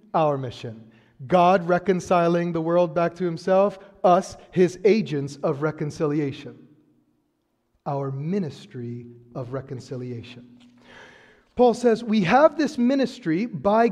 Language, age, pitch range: English, 40-59, 145-235 Hz